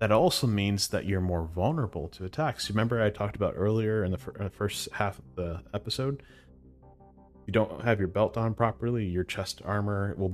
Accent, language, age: American, English, 30-49